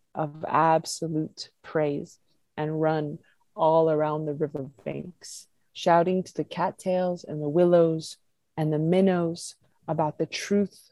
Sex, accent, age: female, American, 30-49